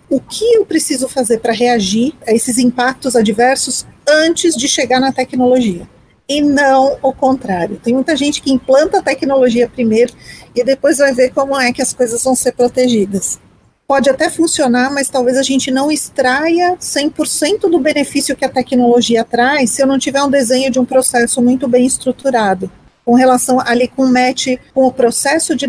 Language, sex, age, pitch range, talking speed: Portuguese, female, 40-59, 245-285 Hz, 180 wpm